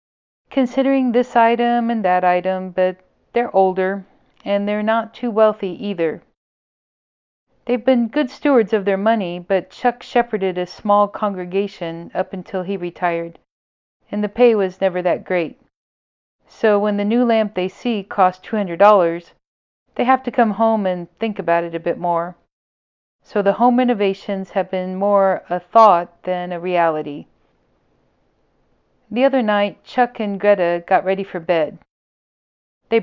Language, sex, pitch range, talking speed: English, female, 180-220 Hz, 150 wpm